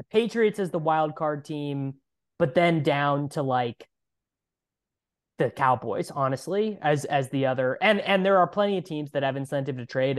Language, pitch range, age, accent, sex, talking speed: English, 130-160 Hz, 20-39, American, male, 175 wpm